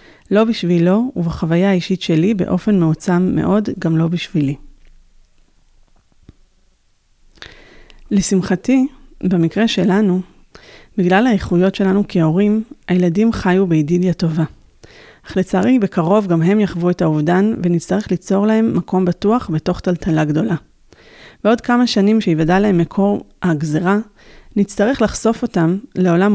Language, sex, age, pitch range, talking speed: Hebrew, female, 30-49, 165-205 Hz, 110 wpm